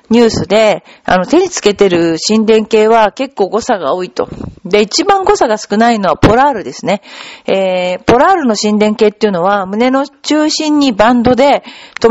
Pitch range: 210-290 Hz